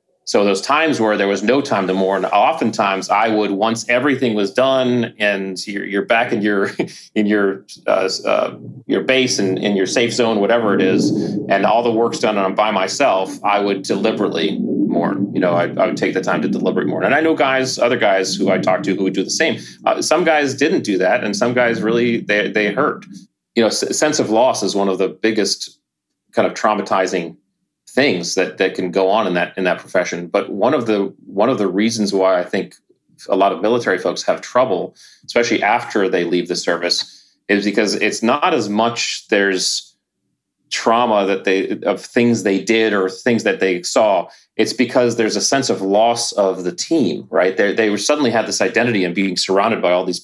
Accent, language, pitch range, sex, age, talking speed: American, English, 95-115 Hz, male, 30-49, 215 wpm